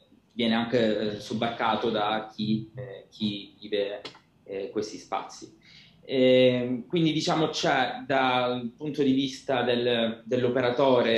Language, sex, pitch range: Italian, male, 110-130 Hz